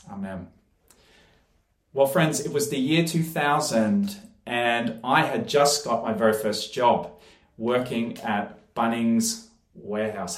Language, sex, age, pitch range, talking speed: English, male, 30-49, 115-155 Hz, 120 wpm